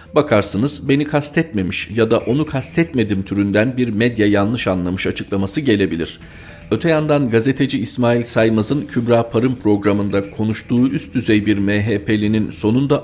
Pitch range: 95-110 Hz